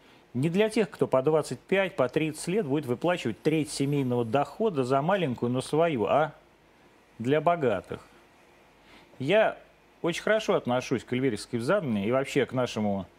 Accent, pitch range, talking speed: native, 120-165 Hz, 145 wpm